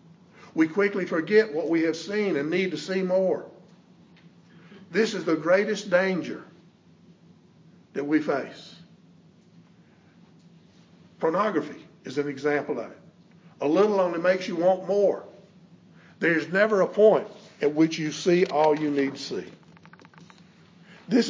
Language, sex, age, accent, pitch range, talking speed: English, male, 50-69, American, 155-185 Hz, 135 wpm